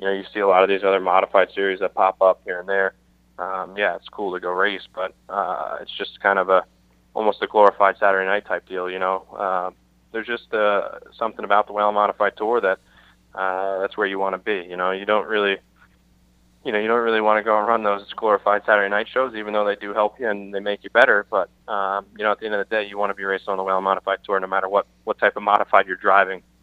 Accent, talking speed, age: American, 265 wpm, 20-39